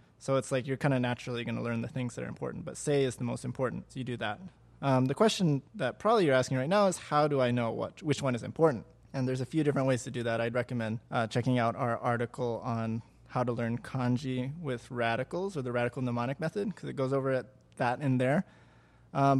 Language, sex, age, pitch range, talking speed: English, male, 20-39, 120-140 Hz, 245 wpm